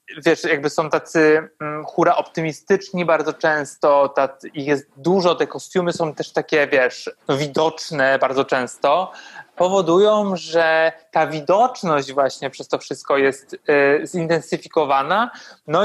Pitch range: 150-180 Hz